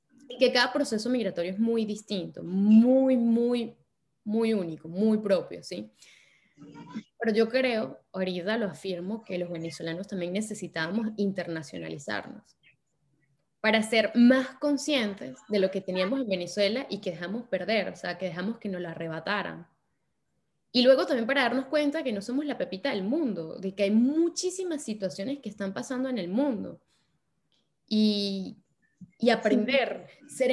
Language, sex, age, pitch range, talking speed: Spanish, female, 10-29, 180-240 Hz, 150 wpm